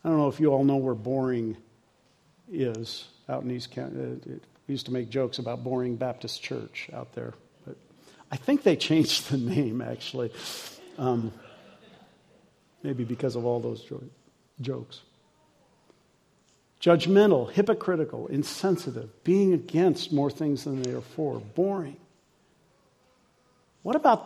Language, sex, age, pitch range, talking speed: English, male, 50-69, 130-180 Hz, 140 wpm